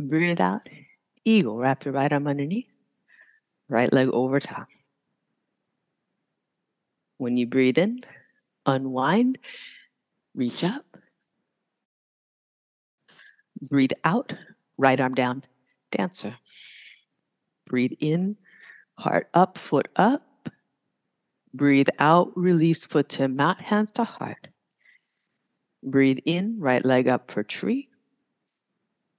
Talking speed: 95 wpm